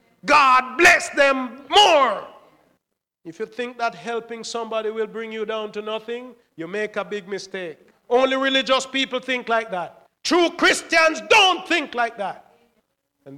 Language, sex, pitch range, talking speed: English, male, 230-280 Hz, 155 wpm